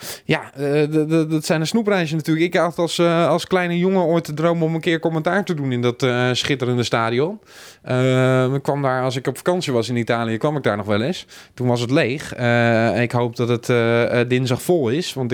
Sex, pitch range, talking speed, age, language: male, 120-150 Hz, 240 wpm, 20-39, Dutch